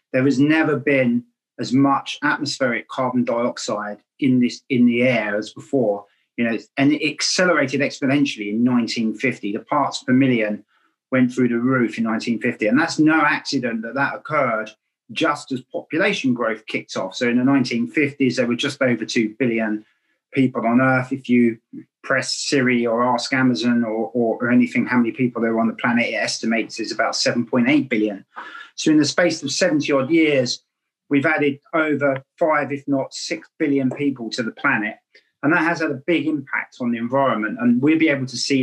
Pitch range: 115-140 Hz